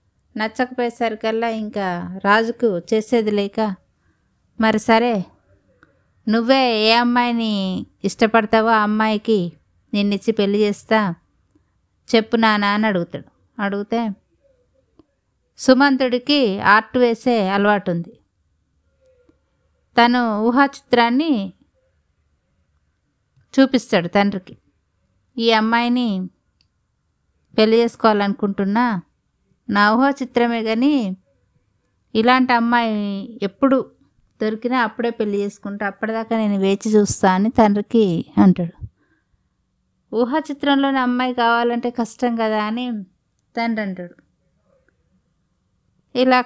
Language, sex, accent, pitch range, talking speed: Telugu, female, native, 185-235 Hz, 85 wpm